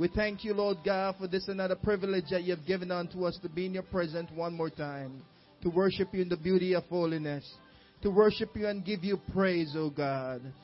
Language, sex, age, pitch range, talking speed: English, male, 20-39, 175-220 Hz, 235 wpm